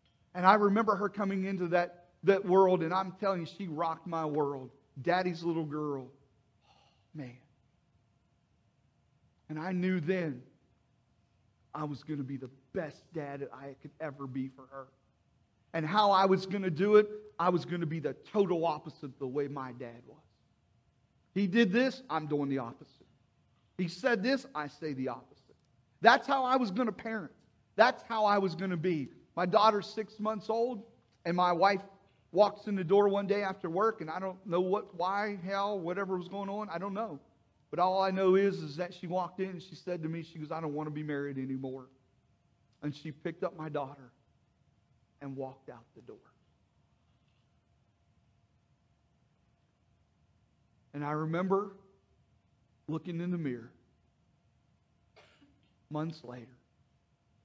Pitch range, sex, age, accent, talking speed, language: 140-195 Hz, male, 40-59, American, 170 wpm, English